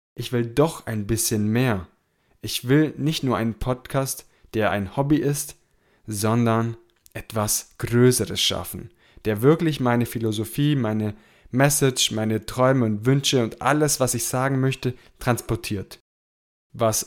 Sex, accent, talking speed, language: male, German, 135 wpm, German